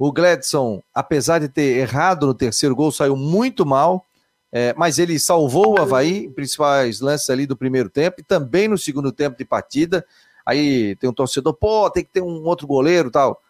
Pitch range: 135-180 Hz